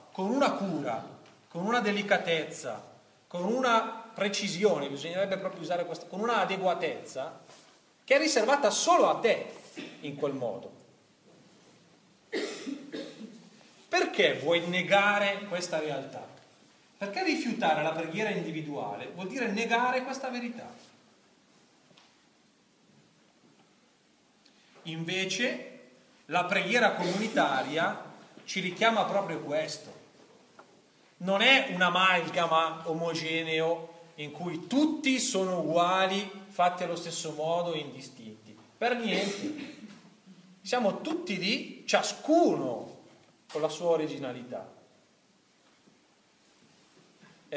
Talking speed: 95 wpm